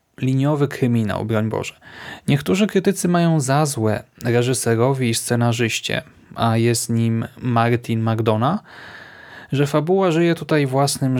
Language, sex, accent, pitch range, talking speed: Polish, male, native, 120-150 Hz, 120 wpm